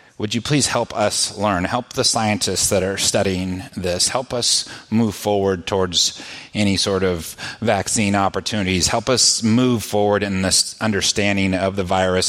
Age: 30-49